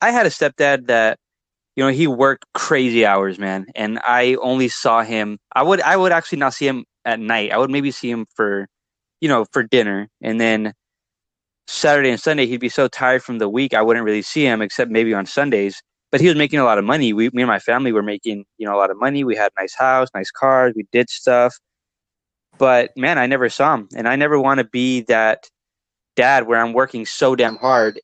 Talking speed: 235 wpm